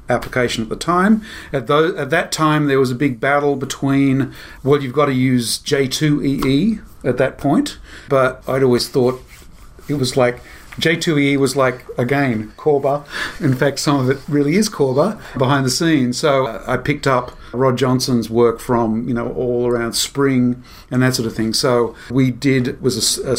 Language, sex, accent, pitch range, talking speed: English, male, Australian, 120-145 Hz, 185 wpm